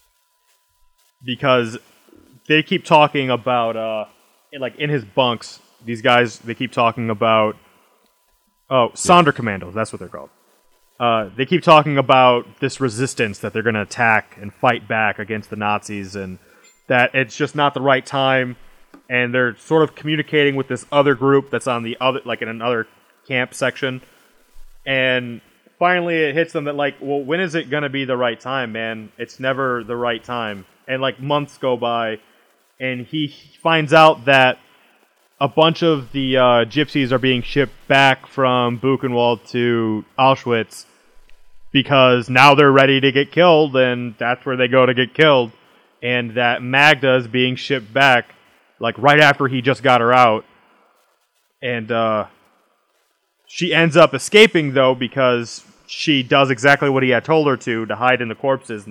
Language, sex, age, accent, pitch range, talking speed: English, male, 20-39, American, 120-140 Hz, 170 wpm